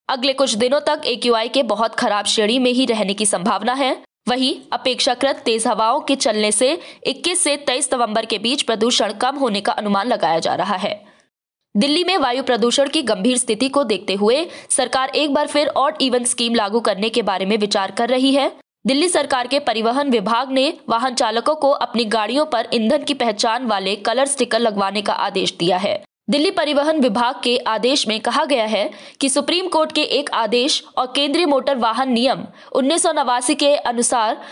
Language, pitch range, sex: Hindi, 230-285 Hz, female